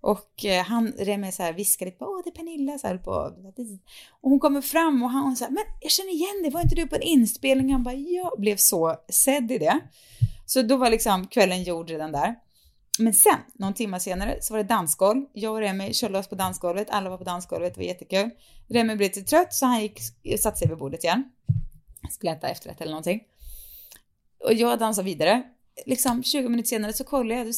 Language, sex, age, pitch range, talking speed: Swedish, female, 20-39, 185-270 Hz, 205 wpm